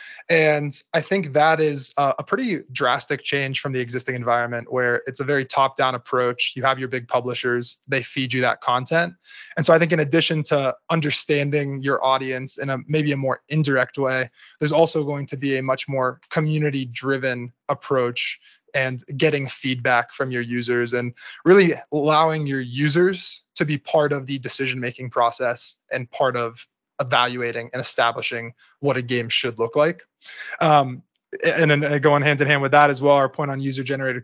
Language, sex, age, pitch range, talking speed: English, male, 20-39, 125-150 Hz, 175 wpm